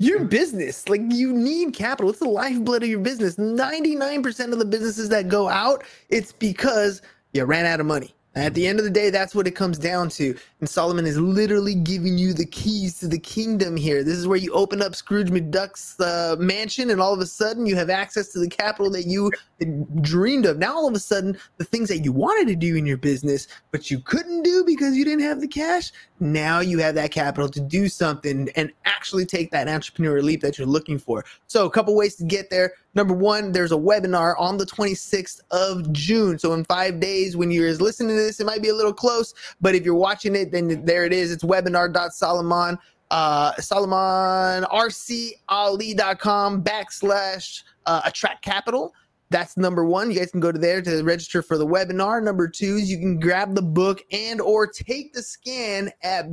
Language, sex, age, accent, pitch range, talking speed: English, male, 20-39, American, 170-215 Hz, 210 wpm